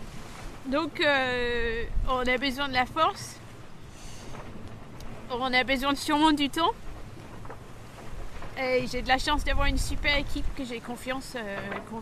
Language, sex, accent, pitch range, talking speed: French, female, French, 230-300 Hz, 140 wpm